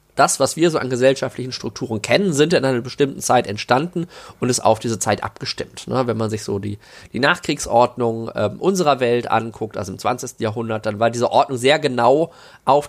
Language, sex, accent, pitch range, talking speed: German, male, German, 115-145 Hz, 190 wpm